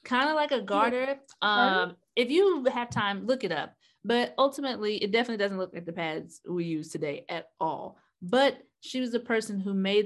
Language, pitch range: English, 170-215 Hz